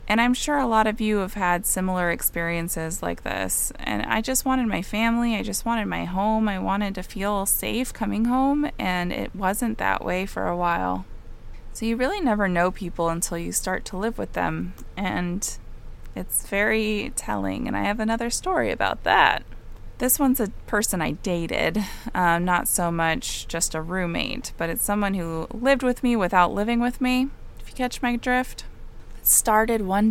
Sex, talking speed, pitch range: female, 185 wpm, 170-230 Hz